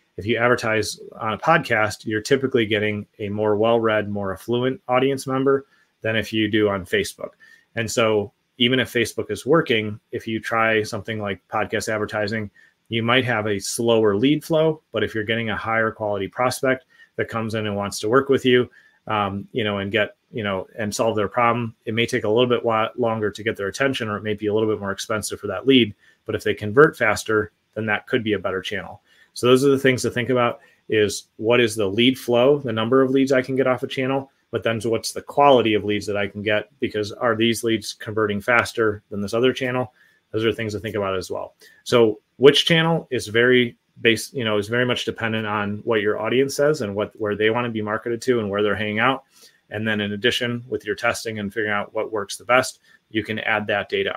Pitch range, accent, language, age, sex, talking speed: 105-125 Hz, American, English, 30-49, male, 230 wpm